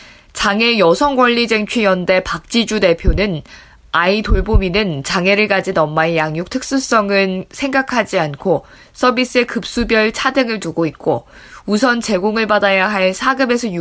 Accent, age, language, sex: native, 20-39, Korean, female